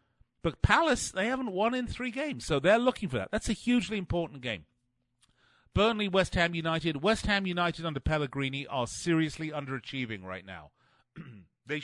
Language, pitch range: English, 115-165 Hz